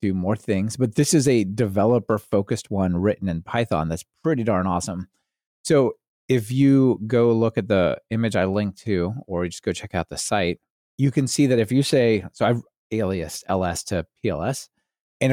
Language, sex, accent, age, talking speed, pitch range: English, male, American, 30-49, 190 wpm, 100-125 Hz